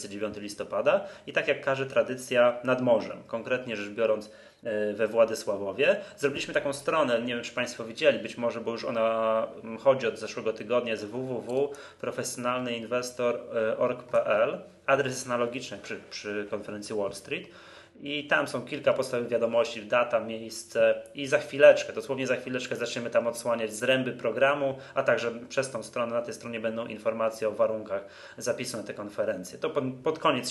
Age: 20-39